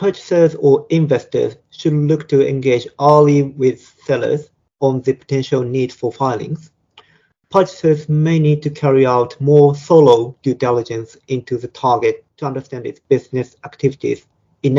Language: English